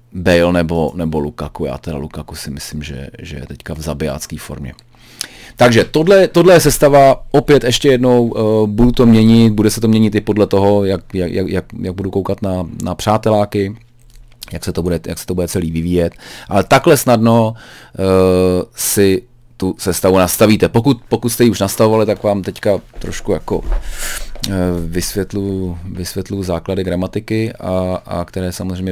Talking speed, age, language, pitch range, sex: 165 wpm, 30-49, Czech, 90-120 Hz, male